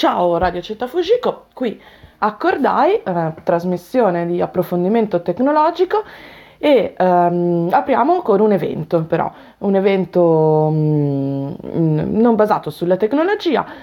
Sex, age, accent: female, 20-39, native